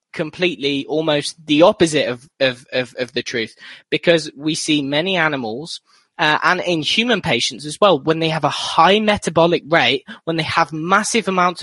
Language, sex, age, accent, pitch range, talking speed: English, male, 20-39, British, 140-180 Hz, 175 wpm